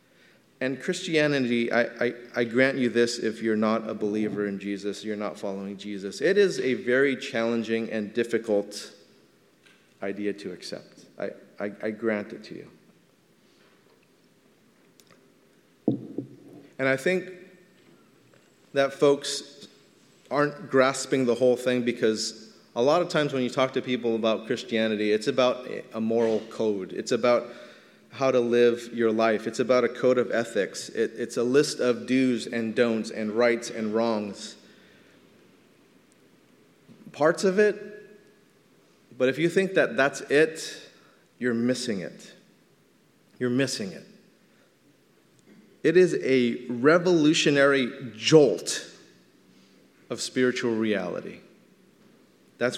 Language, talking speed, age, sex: English, 125 wpm, 30-49, male